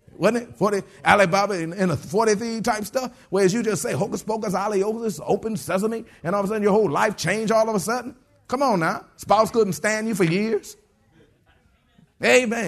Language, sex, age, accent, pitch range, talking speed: English, male, 30-49, American, 190-225 Hz, 200 wpm